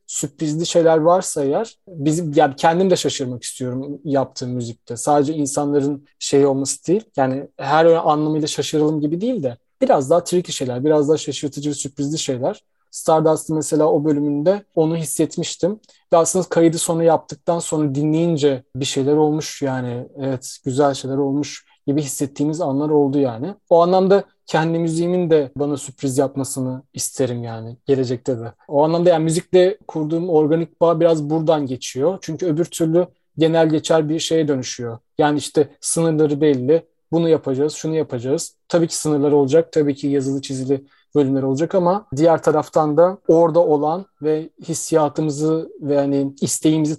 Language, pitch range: Turkish, 140-165 Hz